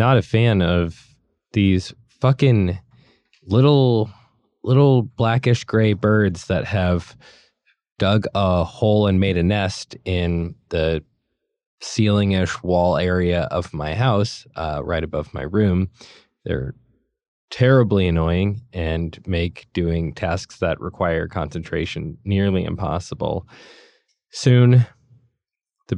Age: 20-39